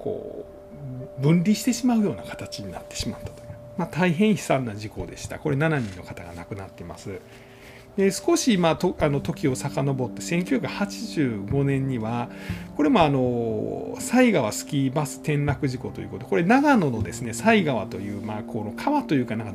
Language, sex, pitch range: Japanese, male, 115-170 Hz